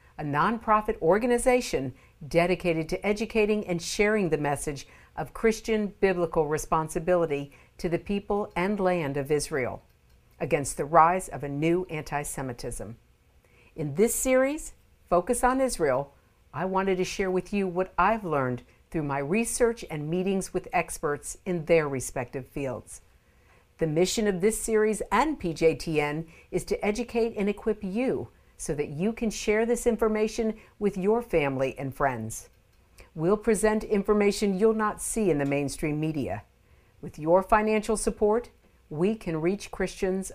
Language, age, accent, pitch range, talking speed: English, 50-69, American, 150-215 Hz, 145 wpm